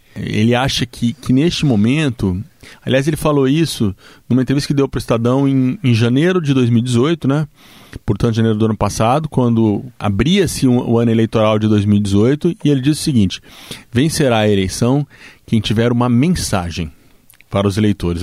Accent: Brazilian